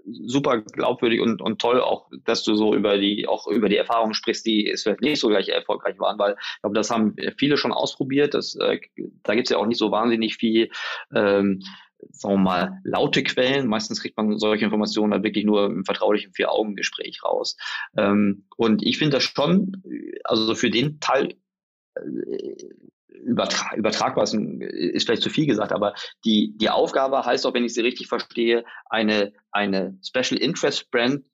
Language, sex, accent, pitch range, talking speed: German, male, German, 100-125 Hz, 185 wpm